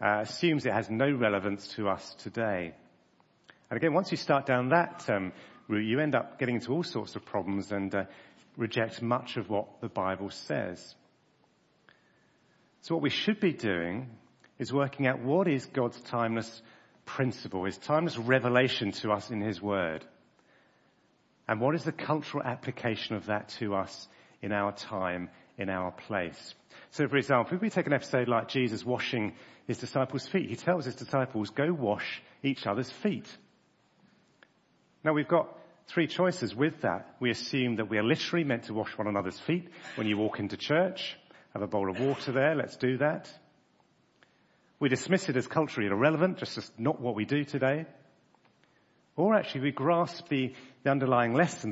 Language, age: English, 40-59